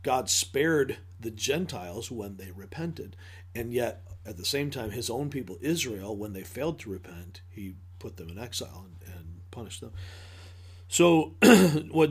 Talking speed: 165 wpm